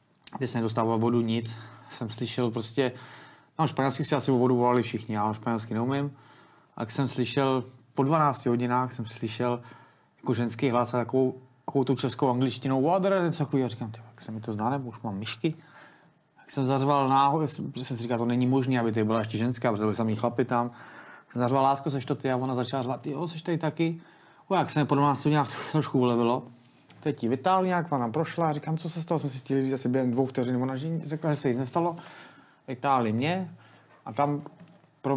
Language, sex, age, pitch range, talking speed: Czech, male, 30-49, 120-150 Hz, 200 wpm